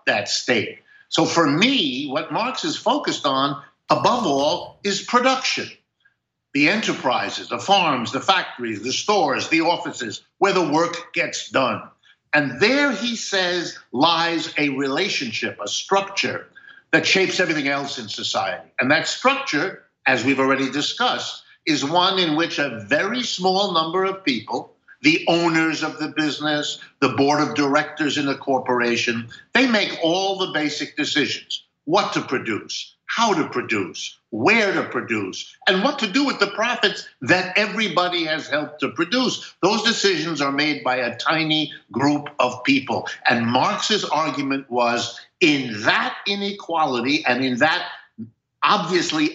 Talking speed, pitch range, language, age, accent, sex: 150 wpm, 140-200 Hz, English, 60-79, American, male